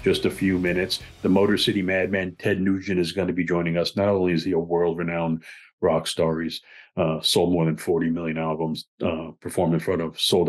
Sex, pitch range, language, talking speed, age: male, 85-100 Hz, English, 225 wpm, 40-59